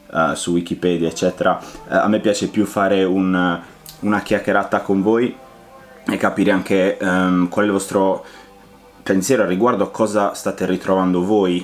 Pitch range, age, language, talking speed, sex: 90-100 Hz, 20-39, Italian, 160 wpm, male